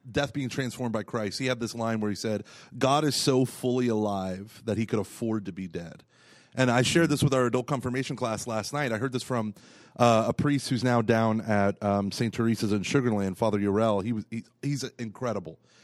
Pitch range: 105-125 Hz